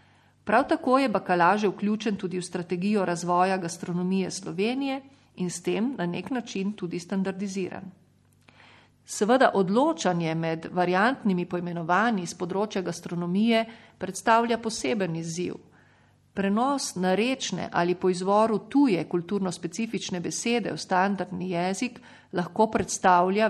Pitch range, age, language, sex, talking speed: 180-220 Hz, 40-59, Italian, female, 115 wpm